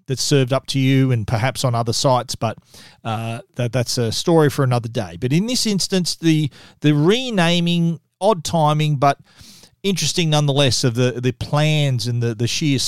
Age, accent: 40-59, Australian